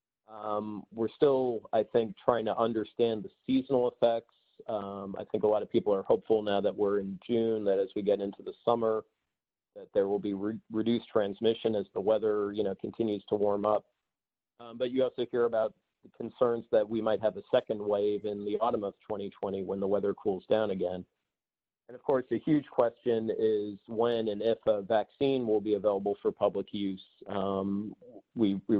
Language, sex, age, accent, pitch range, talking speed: English, male, 40-59, American, 100-115 Hz, 200 wpm